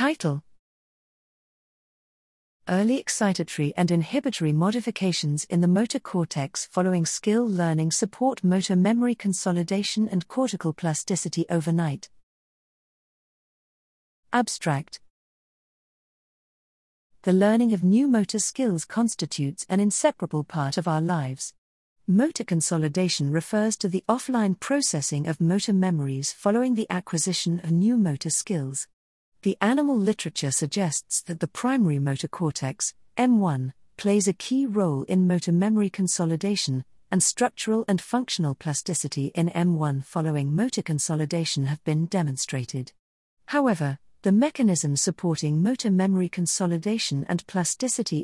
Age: 40-59